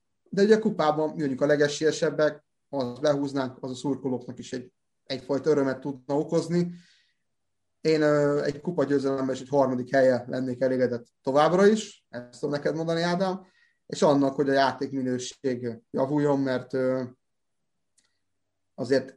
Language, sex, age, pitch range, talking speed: Hungarian, male, 30-49, 125-150 Hz, 140 wpm